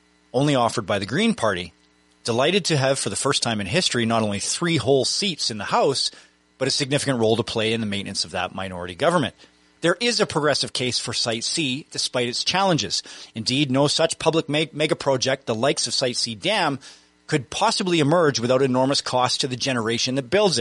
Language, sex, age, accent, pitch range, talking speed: English, male, 30-49, American, 120-165 Hz, 205 wpm